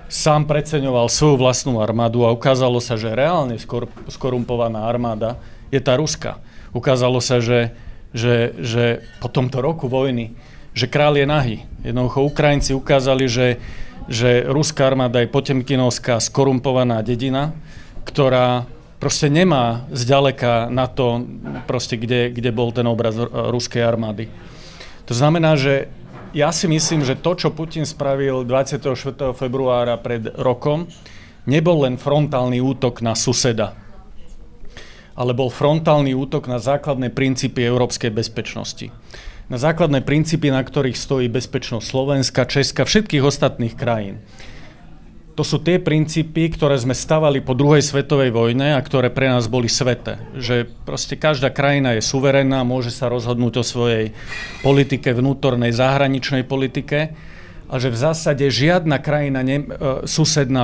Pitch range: 120-140 Hz